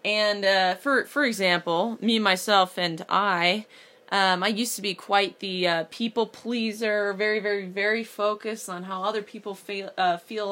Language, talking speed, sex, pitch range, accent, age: English, 170 wpm, female, 180-225 Hz, American, 20-39